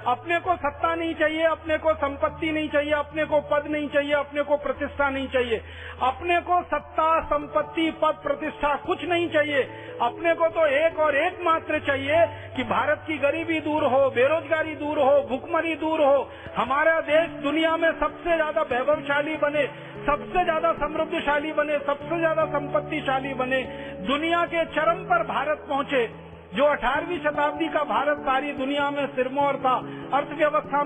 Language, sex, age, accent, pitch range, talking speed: Marathi, male, 50-69, native, 275-315 Hz, 155 wpm